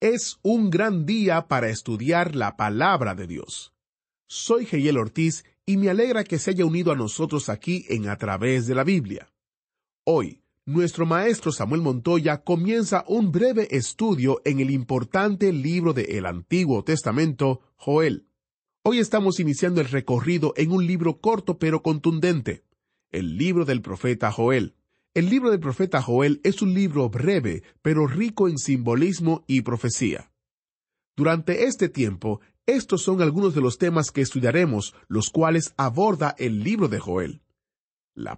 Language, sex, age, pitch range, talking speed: English, male, 30-49, 125-180 Hz, 150 wpm